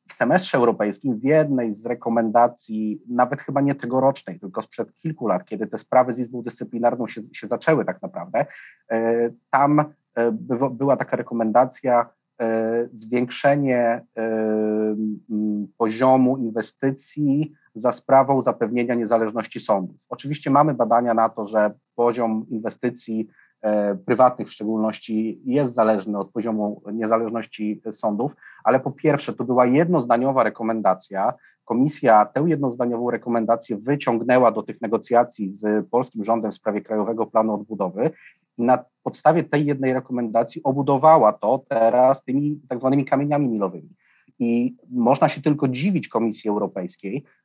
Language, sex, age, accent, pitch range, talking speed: Polish, male, 30-49, native, 110-135 Hz, 125 wpm